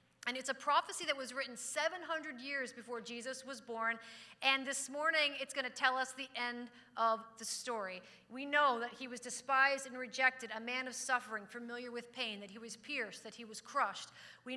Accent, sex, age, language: American, female, 40-59, English